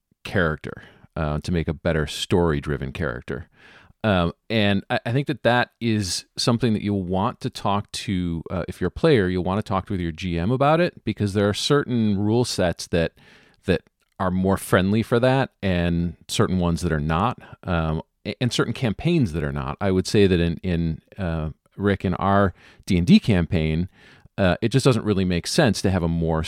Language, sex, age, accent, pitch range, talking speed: English, male, 40-59, American, 85-110 Hz, 195 wpm